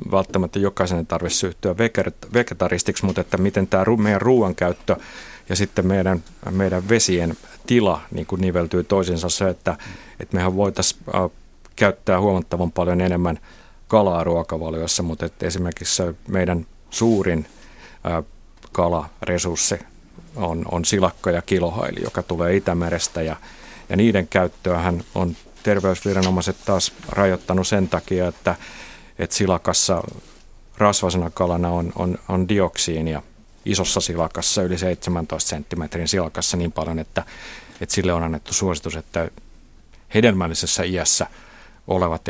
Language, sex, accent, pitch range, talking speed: Finnish, male, native, 85-95 Hz, 120 wpm